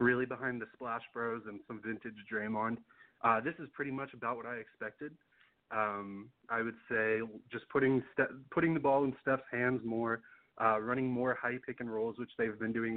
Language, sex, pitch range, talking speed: English, male, 110-130 Hz, 200 wpm